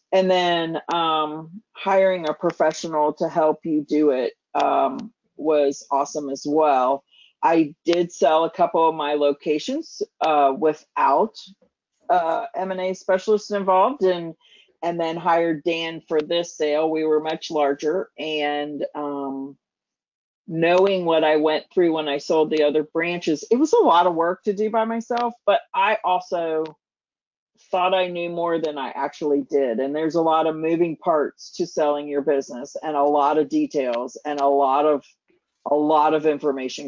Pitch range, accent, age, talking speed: 150-190 Hz, American, 40-59, 165 wpm